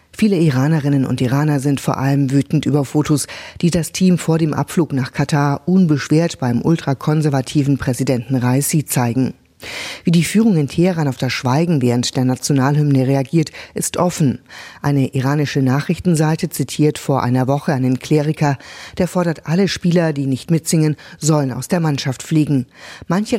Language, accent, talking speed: German, German, 155 wpm